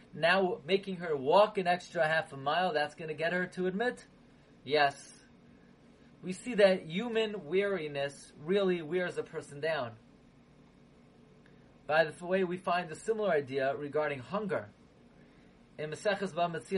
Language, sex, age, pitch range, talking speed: English, male, 30-49, 150-195 Hz, 145 wpm